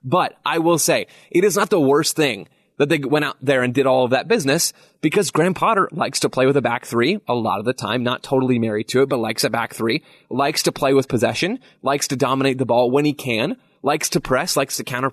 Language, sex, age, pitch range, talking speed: English, male, 20-39, 125-155 Hz, 260 wpm